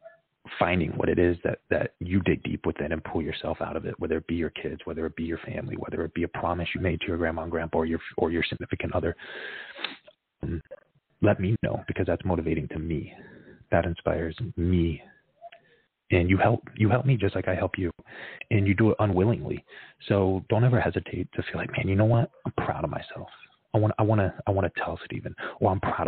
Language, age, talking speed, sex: English, 30-49, 230 wpm, male